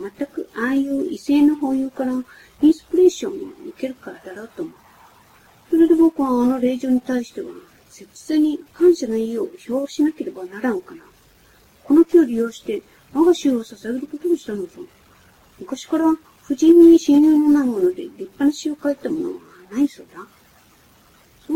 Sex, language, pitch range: female, Japanese, 240-325 Hz